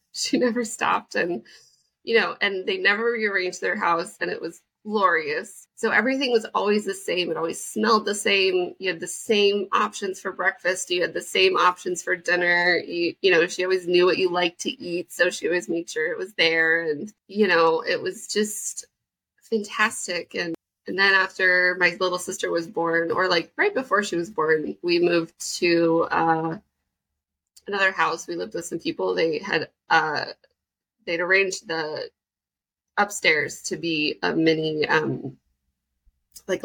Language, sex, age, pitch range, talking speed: English, female, 20-39, 165-215 Hz, 175 wpm